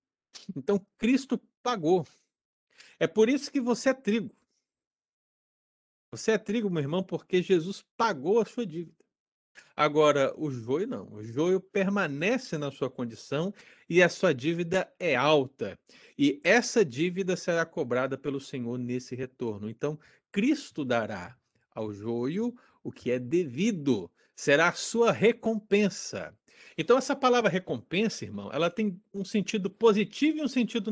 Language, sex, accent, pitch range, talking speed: Portuguese, male, Brazilian, 150-215 Hz, 140 wpm